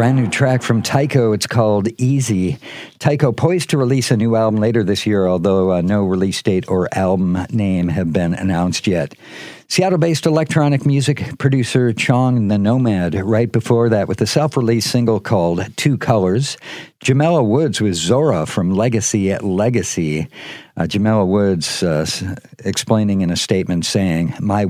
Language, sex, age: English, male, 50-69